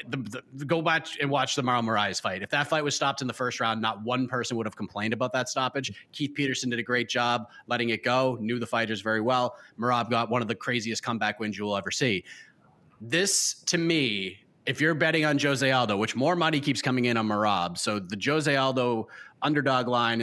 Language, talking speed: English, 220 wpm